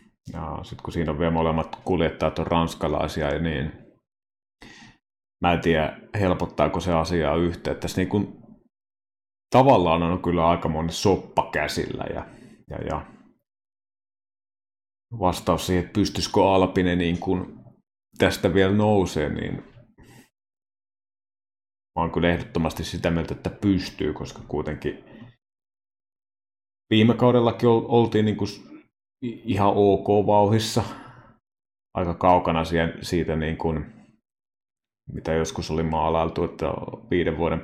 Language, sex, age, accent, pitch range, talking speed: Finnish, male, 30-49, native, 80-105 Hz, 115 wpm